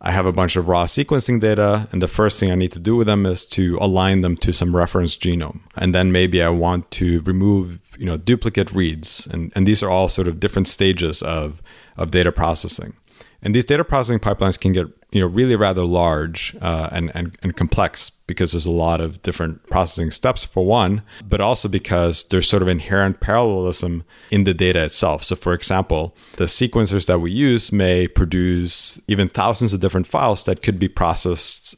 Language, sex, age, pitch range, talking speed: English, male, 30-49, 85-100 Hz, 205 wpm